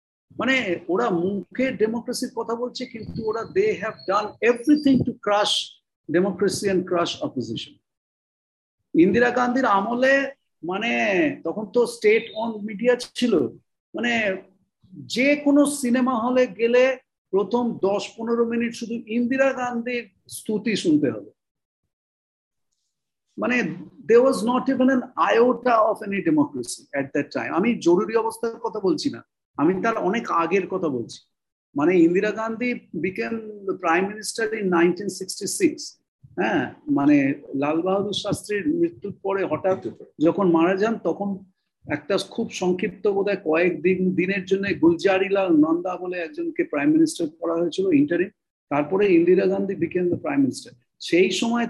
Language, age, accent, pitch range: Bengali, 50-69, native, 190-265 Hz